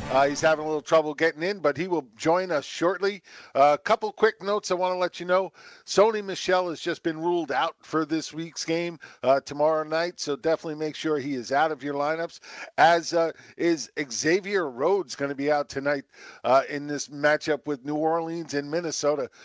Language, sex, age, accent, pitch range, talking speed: English, male, 50-69, American, 140-170 Hz, 210 wpm